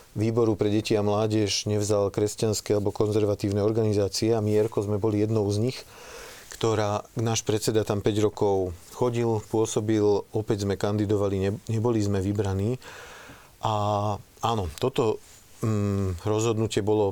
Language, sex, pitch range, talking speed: Slovak, male, 105-115 Hz, 135 wpm